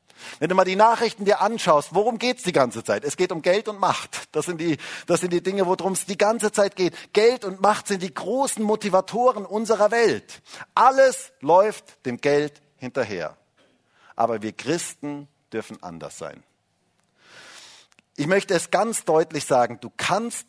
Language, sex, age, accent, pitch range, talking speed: German, male, 50-69, German, 145-215 Hz, 175 wpm